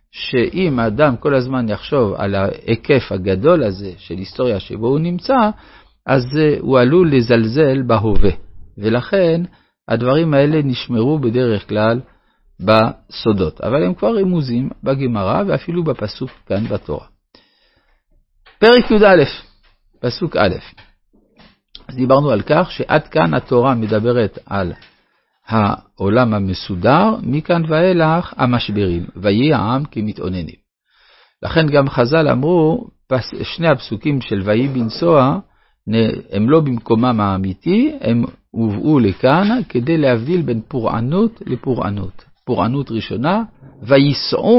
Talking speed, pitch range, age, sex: 110 wpm, 110-155 Hz, 50-69, male